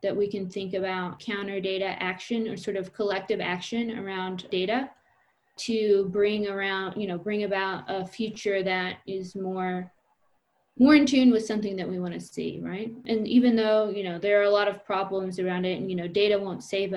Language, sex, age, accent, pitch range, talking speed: English, female, 20-39, American, 185-220 Hz, 200 wpm